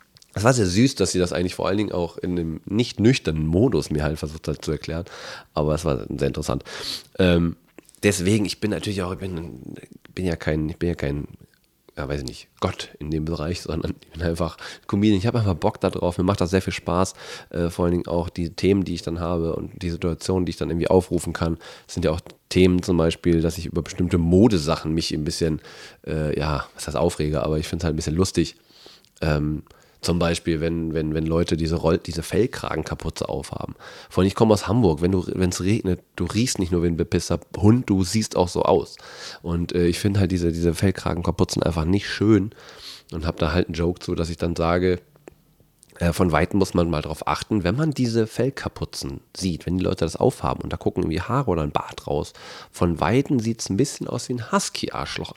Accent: German